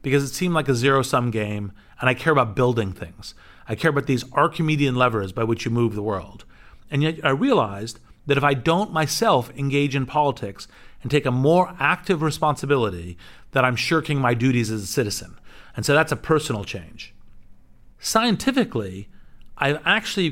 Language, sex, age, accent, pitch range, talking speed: English, male, 40-59, American, 110-150 Hz, 180 wpm